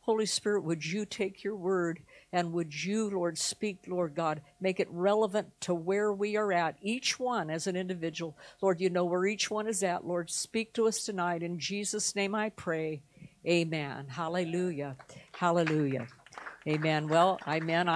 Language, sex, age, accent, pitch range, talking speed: English, female, 60-79, American, 150-190 Hz, 170 wpm